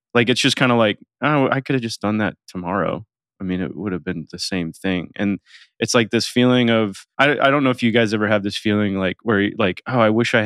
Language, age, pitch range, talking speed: English, 20-39, 105-125 Hz, 270 wpm